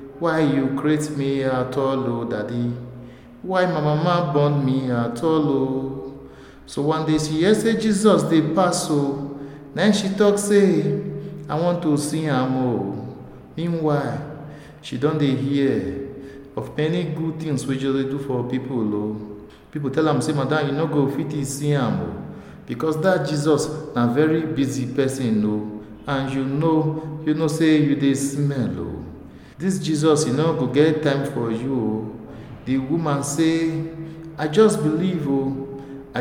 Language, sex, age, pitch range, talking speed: Italian, male, 50-69, 125-160 Hz, 145 wpm